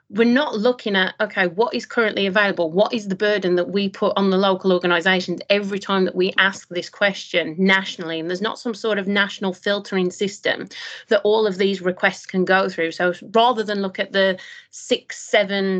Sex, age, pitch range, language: female, 30-49, 185-220 Hz, English